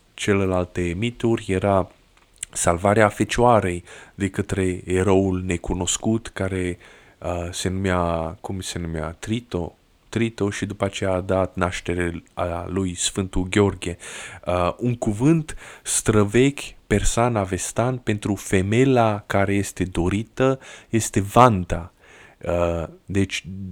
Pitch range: 90-115 Hz